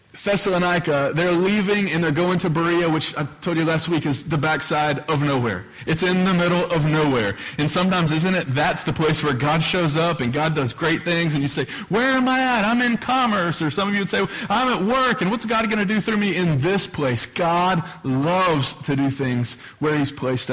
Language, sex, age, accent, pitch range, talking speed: English, male, 30-49, American, 140-185 Hz, 235 wpm